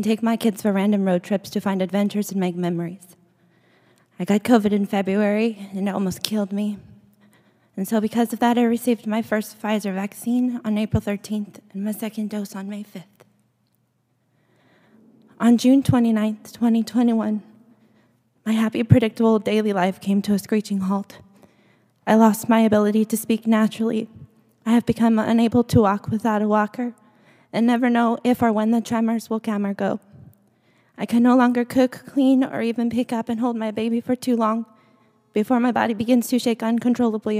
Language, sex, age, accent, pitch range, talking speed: English, female, 20-39, American, 205-235 Hz, 175 wpm